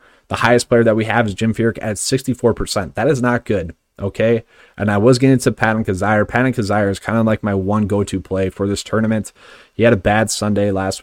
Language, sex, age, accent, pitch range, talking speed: English, male, 20-39, American, 100-115 Hz, 240 wpm